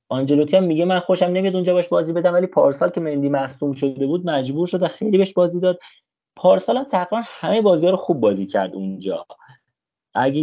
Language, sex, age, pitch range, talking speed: Persian, male, 30-49, 130-175 Hz, 205 wpm